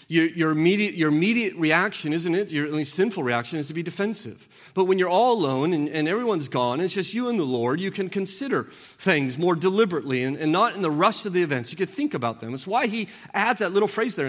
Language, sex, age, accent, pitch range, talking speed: English, male, 40-59, American, 175-245 Hz, 250 wpm